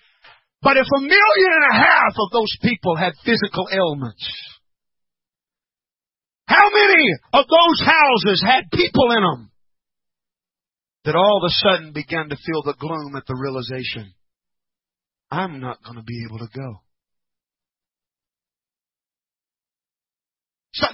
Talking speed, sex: 125 wpm, male